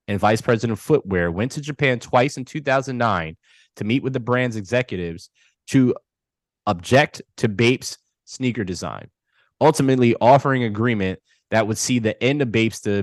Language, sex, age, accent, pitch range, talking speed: Finnish, male, 20-39, American, 100-125 Hz, 145 wpm